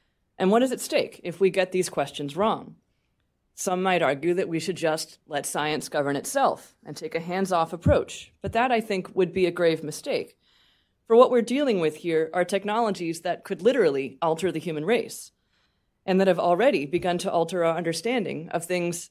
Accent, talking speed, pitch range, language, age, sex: American, 195 wpm, 160-205 Hz, English, 30-49, female